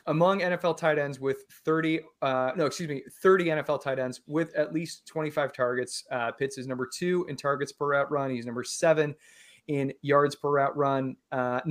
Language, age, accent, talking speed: English, 30-49, American, 195 wpm